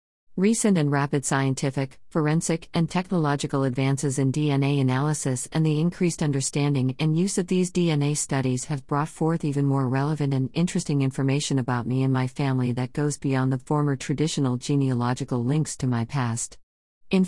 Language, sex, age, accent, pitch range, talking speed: English, female, 50-69, American, 135-155 Hz, 165 wpm